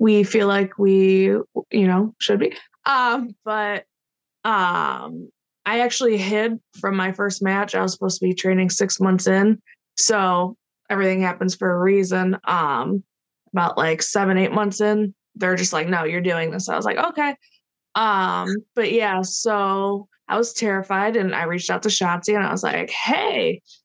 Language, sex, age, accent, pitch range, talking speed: English, female, 20-39, American, 185-215 Hz, 175 wpm